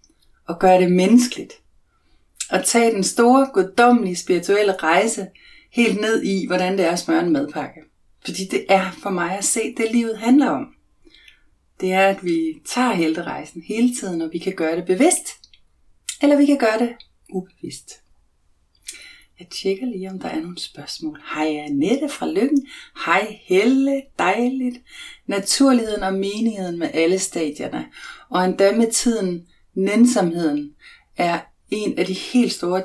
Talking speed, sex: 155 wpm, female